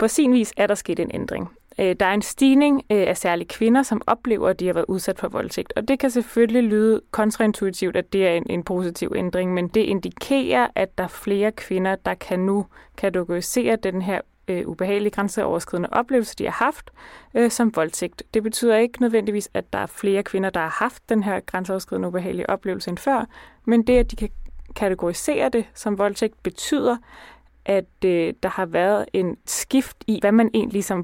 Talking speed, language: 190 wpm, Danish